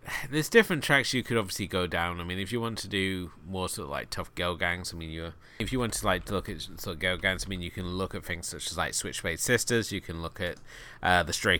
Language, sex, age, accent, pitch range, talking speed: English, male, 30-49, British, 90-105 Hz, 295 wpm